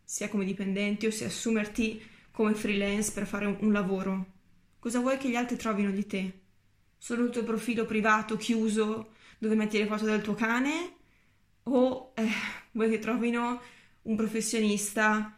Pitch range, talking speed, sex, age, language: 205-240 Hz, 160 wpm, female, 20-39, Italian